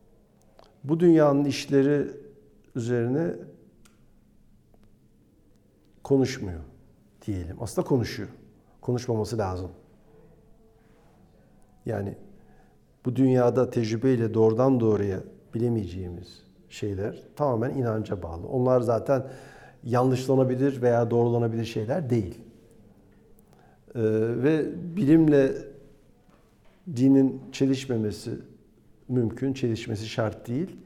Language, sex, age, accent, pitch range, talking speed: Turkish, male, 50-69, native, 110-140 Hz, 70 wpm